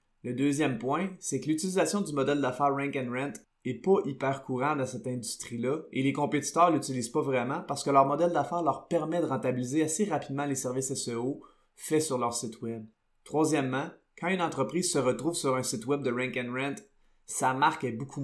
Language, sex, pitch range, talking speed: French, male, 125-150 Hz, 200 wpm